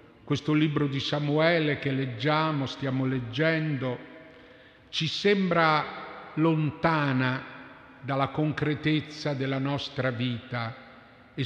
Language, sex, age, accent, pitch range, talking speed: Italian, male, 50-69, native, 130-160 Hz, 90 wpm